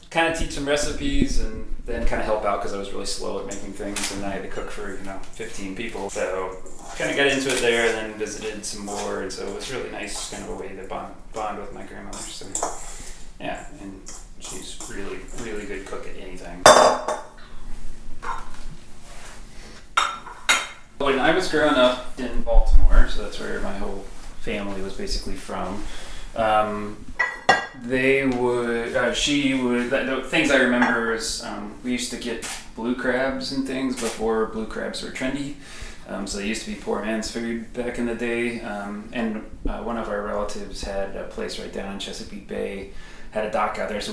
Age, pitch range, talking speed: 30-49, 100-120 Hz, 190 wpm